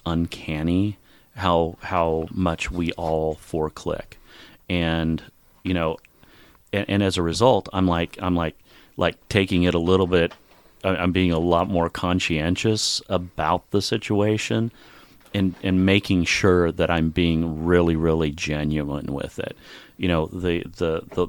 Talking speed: 145 wpm